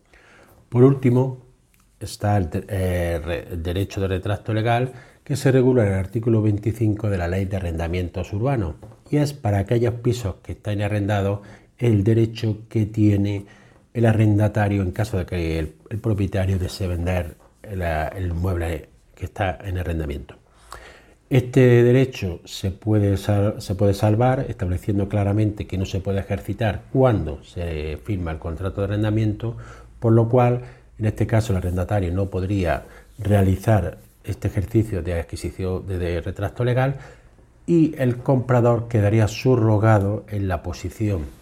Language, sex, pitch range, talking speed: Spanish, male, 95-115 Hz, 145 wpm